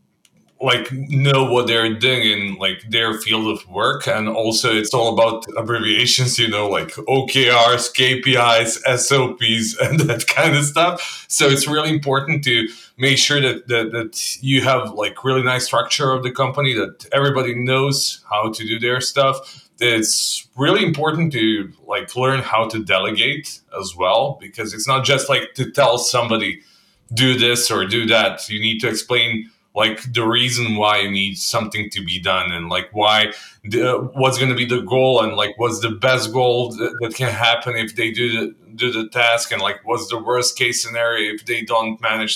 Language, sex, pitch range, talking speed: English, male, 110-130 Hz, 180 wpm